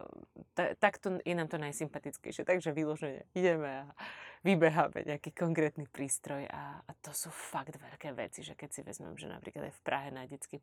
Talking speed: 180 wpm